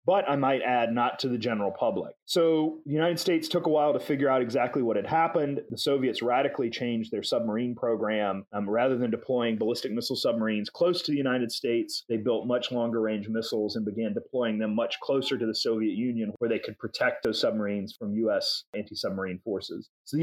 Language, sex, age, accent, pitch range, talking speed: English, male, 30-49, American, 110-145 Hz, 210 wpm